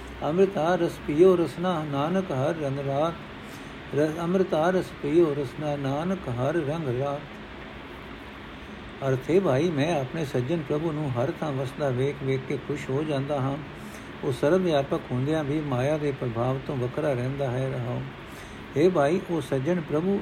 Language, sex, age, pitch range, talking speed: Punjabi, male, 60-79, 130-170 Hz, 145 wpm